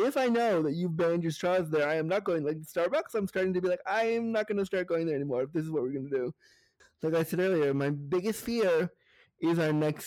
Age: 20-39